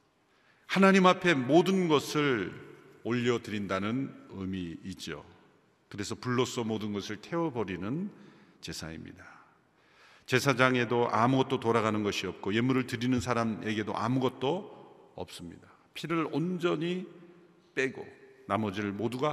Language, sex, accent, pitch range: Korean, male, native, 105-155 Hz